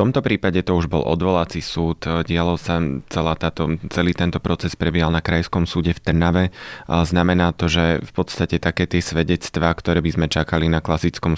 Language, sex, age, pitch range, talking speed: Slovak, male, 20-39, 80-90 Hz, 190 wpm